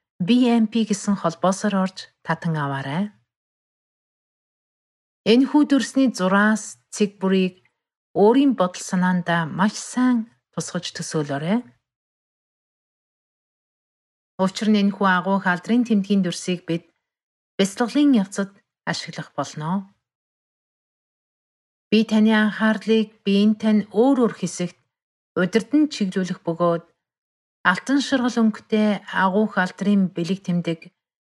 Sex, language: female, English